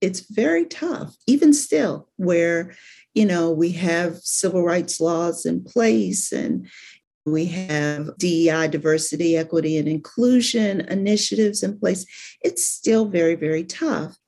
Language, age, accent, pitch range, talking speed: English, 50-69, American, 155-195 Hz, 130 wpm